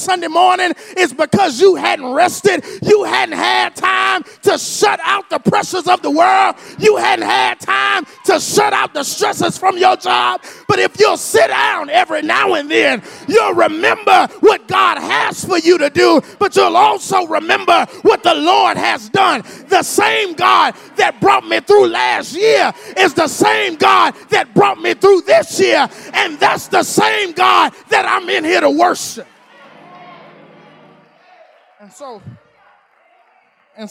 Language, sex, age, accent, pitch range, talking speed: English, male, 30-49, American, 290-385 Hz, 160 wpm